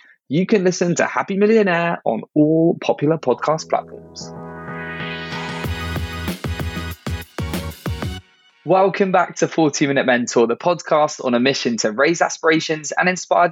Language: English